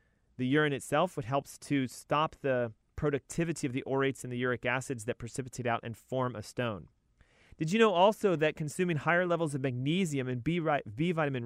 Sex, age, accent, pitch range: male, 30-49, American, 125-155 Hz